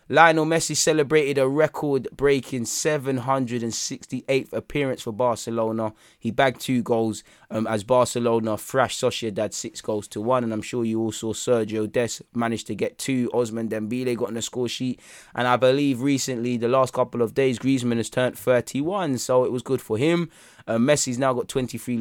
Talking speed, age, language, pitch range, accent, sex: 175 wpm, 20-39, English, 115-135 Hz, British, male